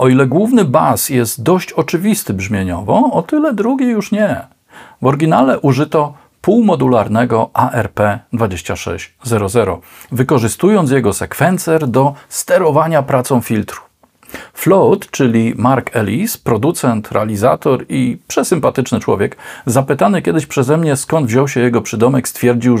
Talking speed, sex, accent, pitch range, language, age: 115 wpm, male, native, 105-145 Hz, Polish, 40-59